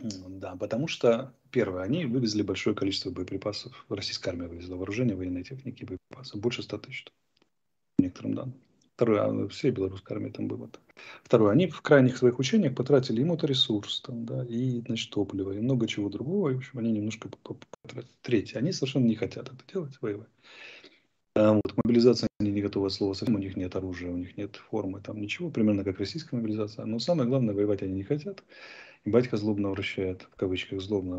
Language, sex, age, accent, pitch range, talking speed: Russian, male, 30-49, native, 95-125 Hz, 180 wpm